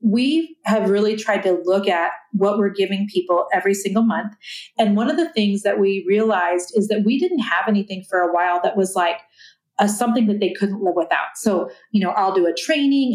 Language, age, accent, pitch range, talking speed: English, 40-59, American, 195-235 Hz, 215 wpm